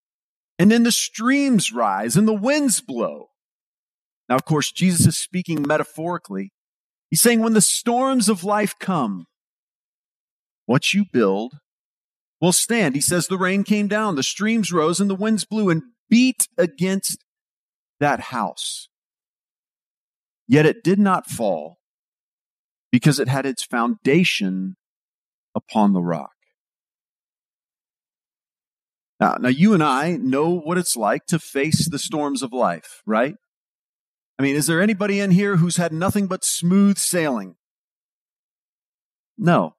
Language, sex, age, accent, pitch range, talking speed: English, male, 40-59, American, 160-215 Hz, 135 wpm